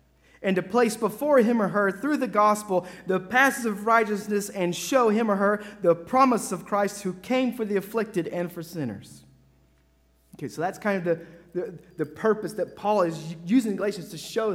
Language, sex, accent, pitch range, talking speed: English, male, American, 125-195 Hz, 195 wpm